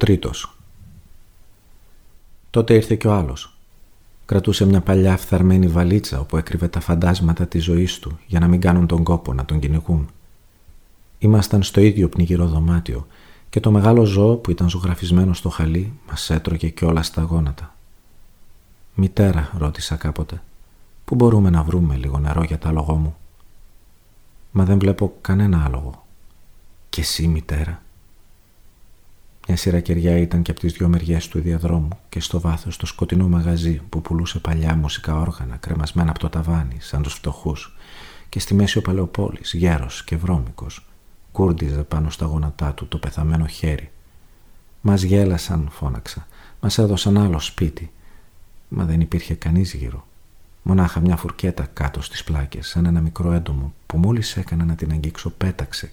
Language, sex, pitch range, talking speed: Greek, male, 80-95 Hz, 150 wpm